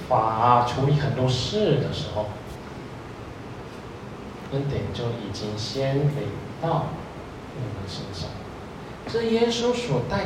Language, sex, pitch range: Chinese, male, 105-145 Hz